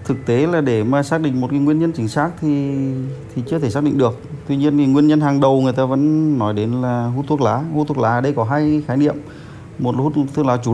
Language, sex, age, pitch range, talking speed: Vietnamese, male, 20-39, 120-145 Hz, 280 wpm